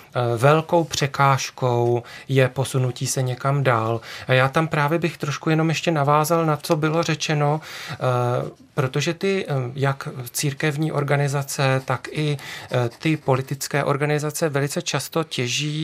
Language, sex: Czech, male